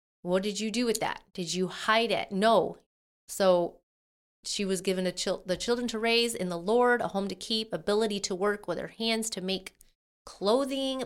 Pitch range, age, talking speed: 170-205 Hz, 30-49, 190 wpm